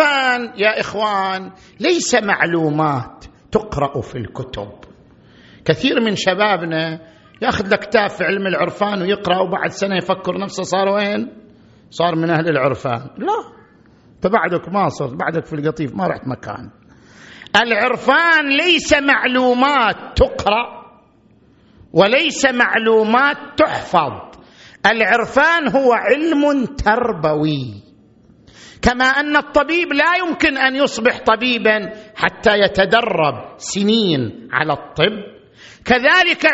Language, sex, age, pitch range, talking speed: Arabic, male, 50-69, 170-265 Hz, 100 wpm